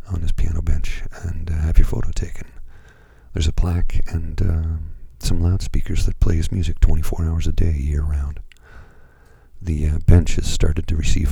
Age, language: 50-69, English